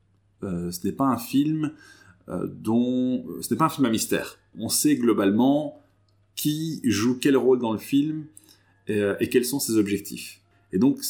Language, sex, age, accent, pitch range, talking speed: French, male, 30-49, French, 100-135 Hz, 185 wpm